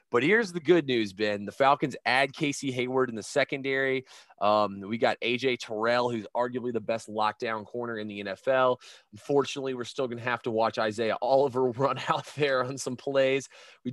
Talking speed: 195 wpm